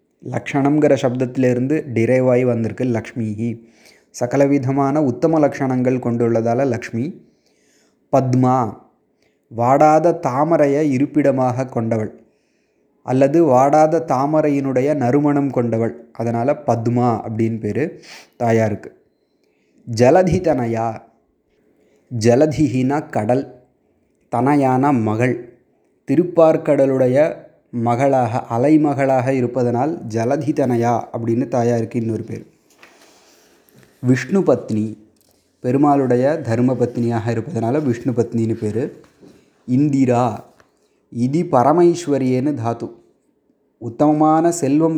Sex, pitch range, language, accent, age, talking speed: male, 115-145 Hz, Tamil, native, 20-39, 70 wpm